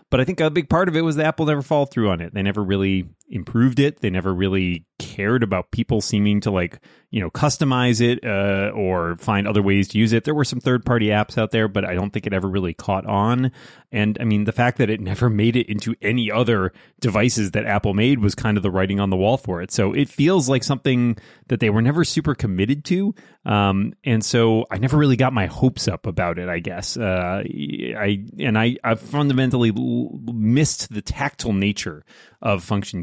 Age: 30-49